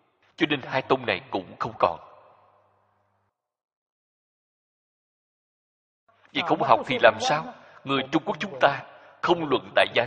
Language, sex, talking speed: Vietnamese, male, 135 wpm